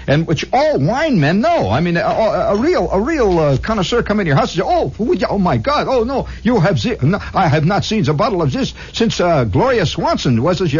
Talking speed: 255 wpm